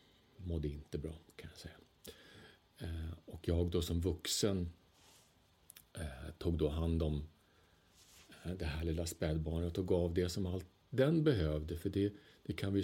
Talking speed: 145 wpm